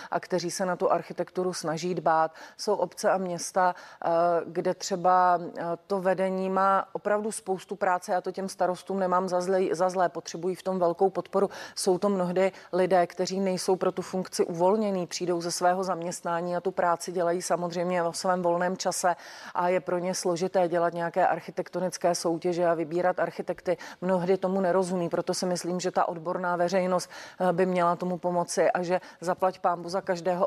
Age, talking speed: 40-59, 175 wpm